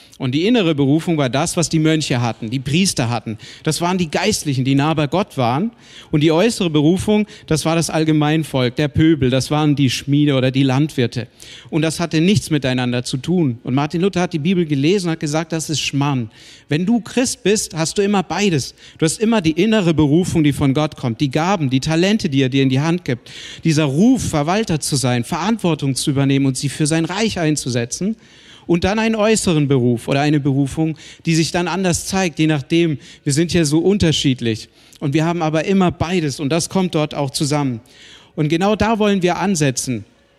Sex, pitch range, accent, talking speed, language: male, 140-175 Hz, German, 210 wpm, German